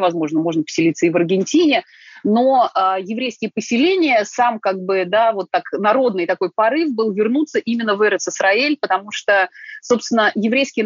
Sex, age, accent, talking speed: female, 30-49, native, 155 wpm